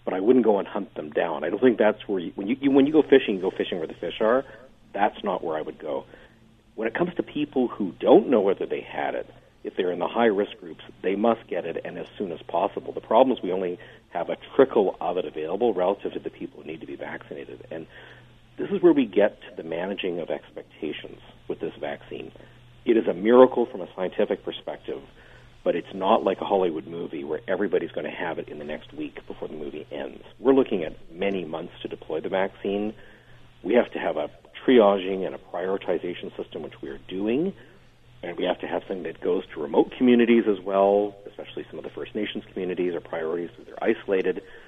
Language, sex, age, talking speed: English, male, 50-69, 230 wpm